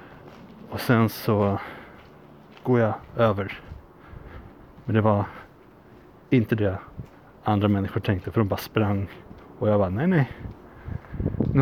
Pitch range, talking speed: 100-125 Hz, 125 wpm